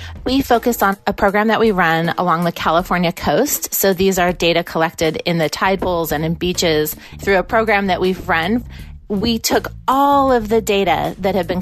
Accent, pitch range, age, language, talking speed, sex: American, 170-225 Hz, 30-49, English, 200 wpm, female